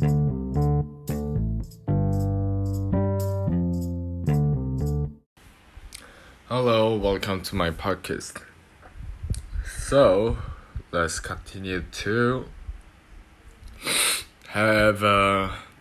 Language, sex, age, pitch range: English, male, 20-39, 80-100 Hz